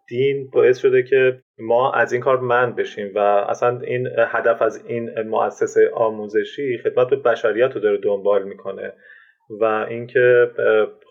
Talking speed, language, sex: 145 wpm, Persian, male